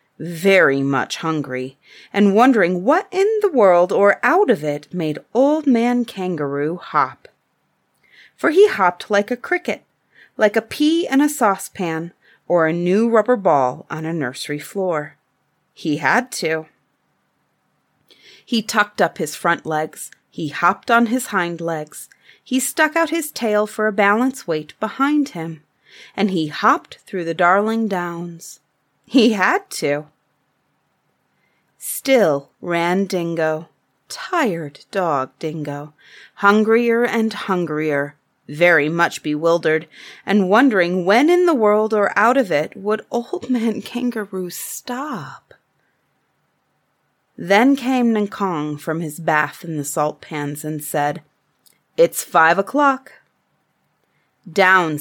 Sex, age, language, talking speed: female, 30-49, English, 130 wpm